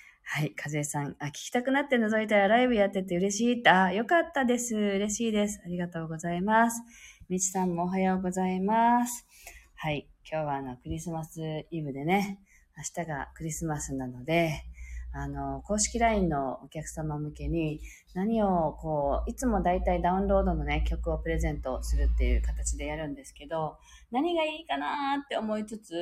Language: Japanese